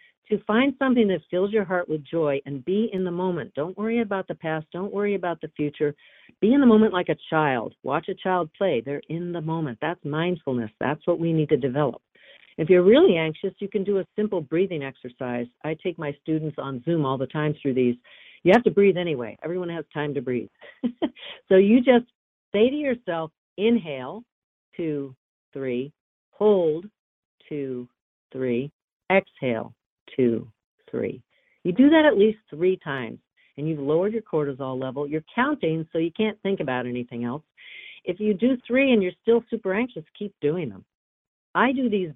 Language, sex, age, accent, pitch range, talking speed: English, female, 50-69, American, 145-205 Hz, 185 wpm